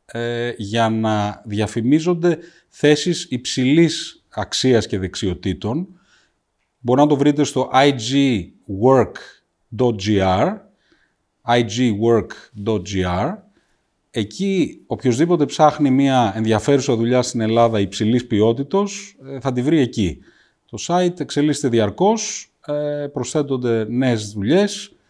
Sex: male